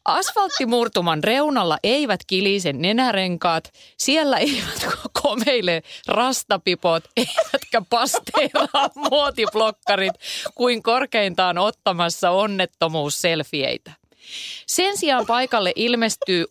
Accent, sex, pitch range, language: native, female, 165-240 Hz, Finnish